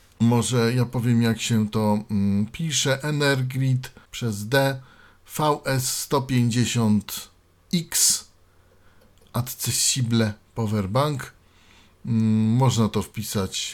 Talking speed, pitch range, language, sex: 80 wpm, 100-130 Hz, Polish, male